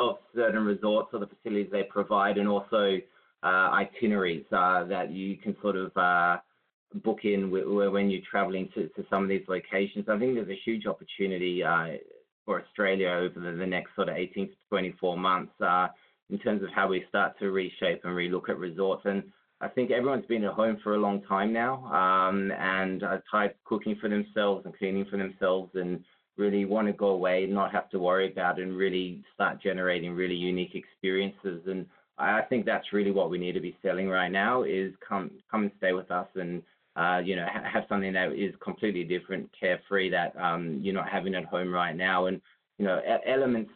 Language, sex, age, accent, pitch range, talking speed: English, male, 20-39, Australian, 90-105 Hz, 210 wpm